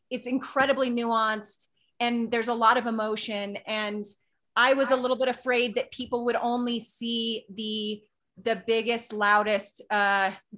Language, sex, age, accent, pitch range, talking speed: English, female, 30-49, American, 210-240 Hz, 145 wpm